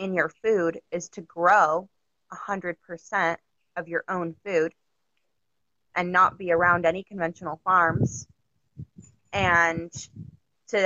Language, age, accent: English, 20-39, American